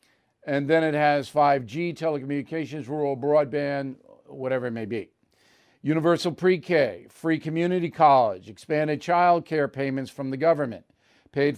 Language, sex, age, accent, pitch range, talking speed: English, male, 50-69, American, 140-180 Hz, 130 wpm